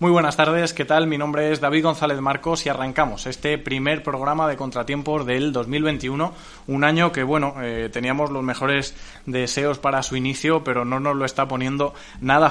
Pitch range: 120-145 Hz